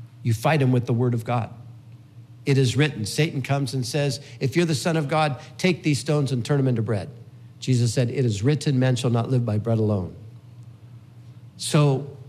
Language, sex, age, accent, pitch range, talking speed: English, male, 50-69, American, 120-150 Hz, 205 wpm